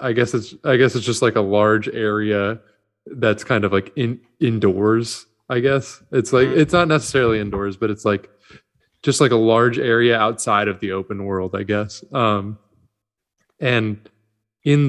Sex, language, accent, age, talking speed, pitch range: male, English, American, 20-39, 175 wpm, 105-120 Hz